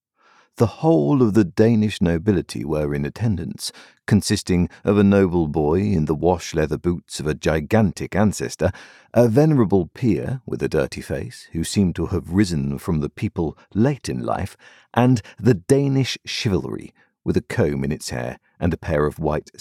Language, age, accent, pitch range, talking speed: English, 50-69, British, 80-120 Hz, 170 wpm